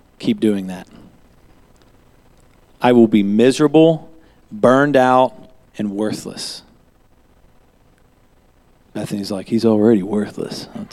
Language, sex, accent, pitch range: English, male, American, 110-150 Hz